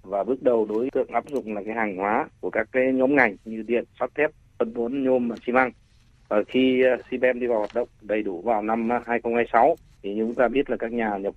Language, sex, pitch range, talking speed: Vietnamese, male, 105-125 Hz, 245 wpm